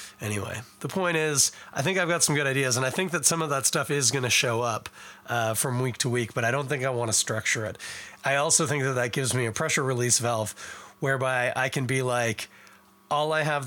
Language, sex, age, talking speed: English, male, 30-49, 250 wpm